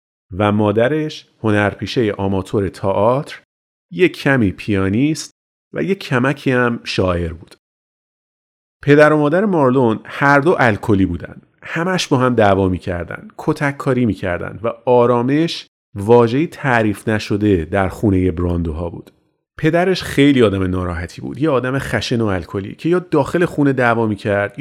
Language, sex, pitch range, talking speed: Persian, male, 100-145 Hz, 130 wpm